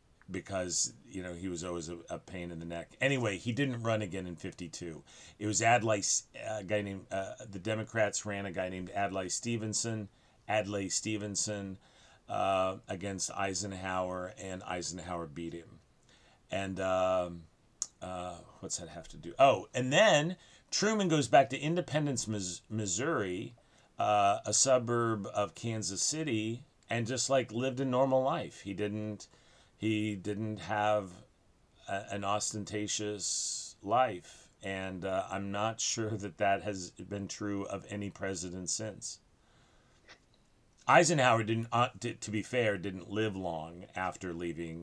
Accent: American